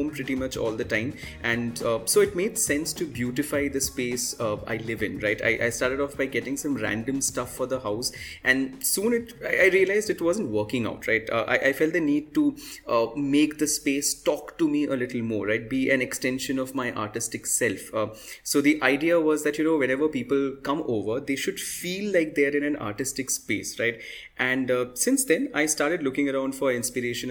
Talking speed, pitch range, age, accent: 220 wpm, 120-150 Hz, 20-39, Indian